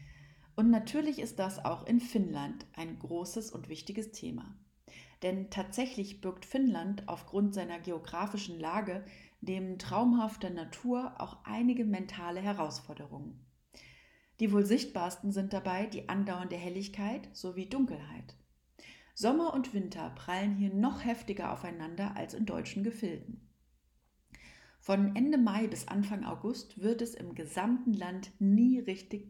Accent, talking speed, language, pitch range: German, 125 wpm, German, 175-230 Hz